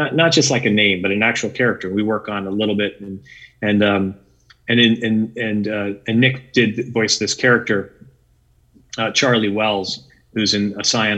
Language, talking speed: English, 200 wpm